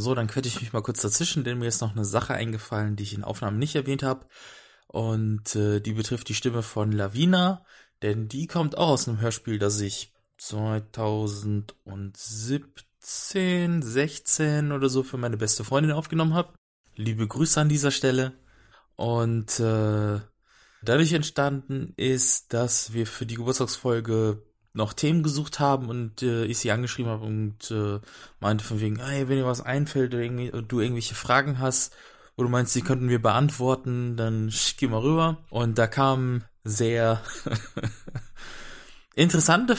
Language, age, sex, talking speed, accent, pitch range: English, 20-39, male, 160 wpm, German, 110-135 Hz